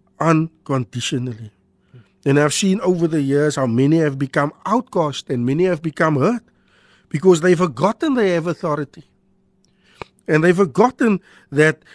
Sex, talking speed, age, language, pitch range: male, 135 wpm, 50-69, Dutch, 135-200 Hz